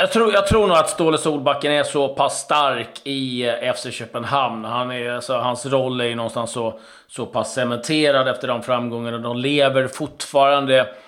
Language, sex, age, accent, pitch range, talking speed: Swedish, male, 30-49, native, 120-145 Hz, 180 wpm